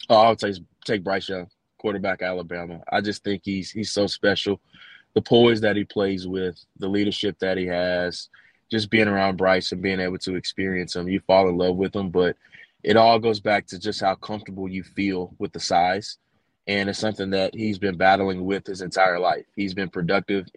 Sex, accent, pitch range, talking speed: male, American, 90-105 Hz, 205 wpm